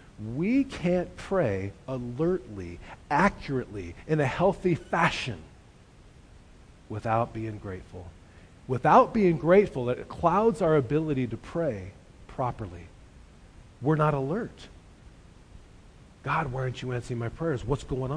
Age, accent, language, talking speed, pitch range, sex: 40-59, American, English, 110 wpm, 105-155 Hz, male